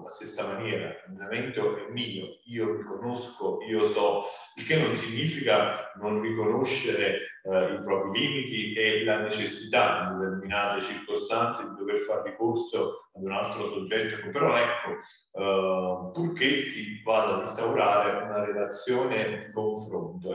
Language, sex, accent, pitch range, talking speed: Italian, male, native, 95-150 Hz, 135 wpm